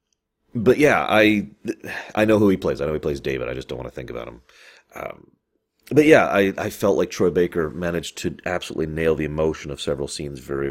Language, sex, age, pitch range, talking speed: English, male, 30-49, 70-95 Hz, 225 wpm